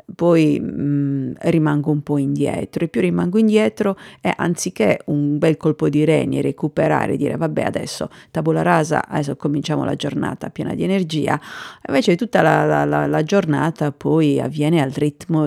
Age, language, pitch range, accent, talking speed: 40-59, Italian, 145-165 Hz, native, 150 wpm